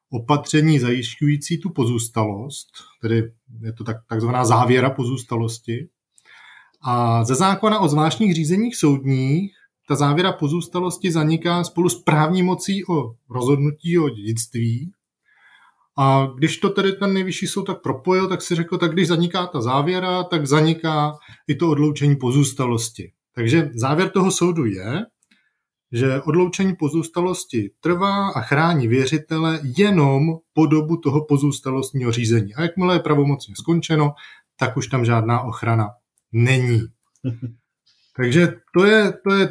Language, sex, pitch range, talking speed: Czech, male, 125-170 Hz, 130 wpm